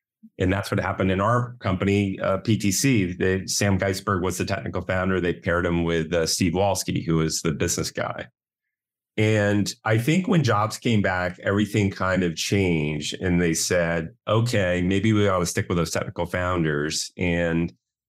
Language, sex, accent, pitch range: English, male, American, 85-110 Hz